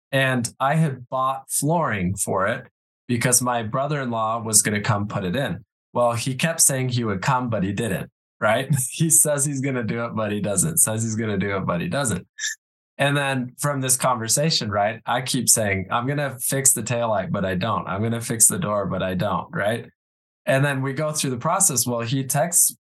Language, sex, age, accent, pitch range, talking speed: English, male, 20-39, American, 110-140 Hz, 225 wpm